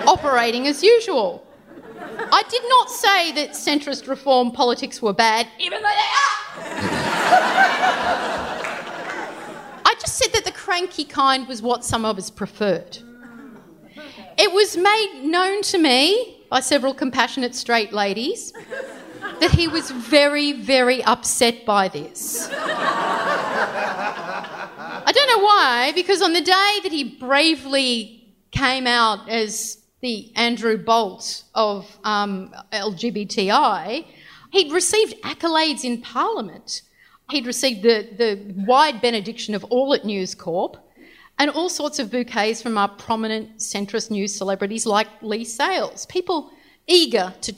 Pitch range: 220-310 Hz